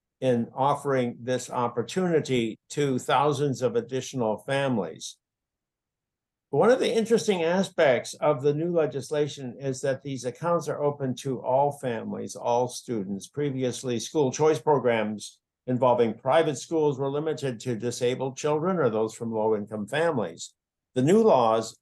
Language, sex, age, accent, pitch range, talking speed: English, male, 60-79, American, 120-150 Hz, 135 wpm